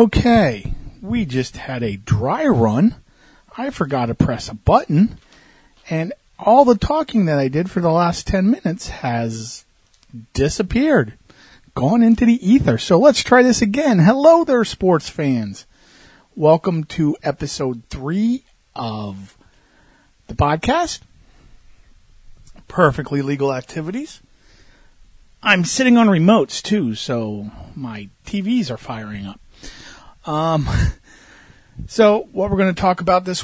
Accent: American